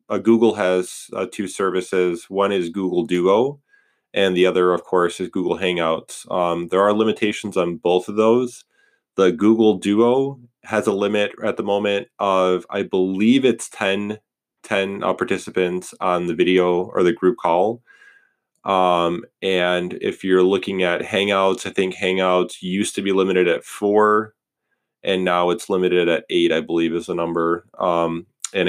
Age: 20-39